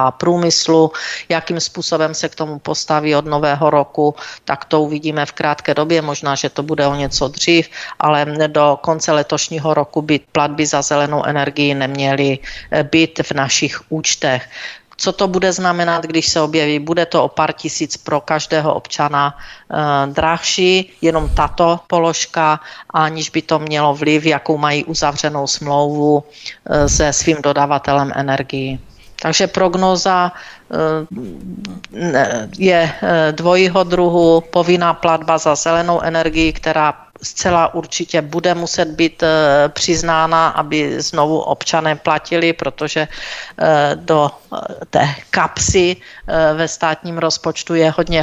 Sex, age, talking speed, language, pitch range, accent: female, 40-59, 125 wpm, Czech, 150-165 Hz, native